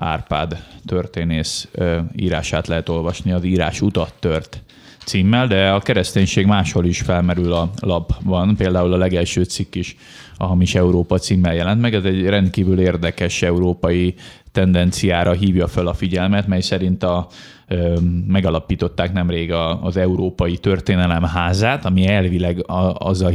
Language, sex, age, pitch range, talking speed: Hungarian, male, 20-39, 85-95 Hz, 140 wpm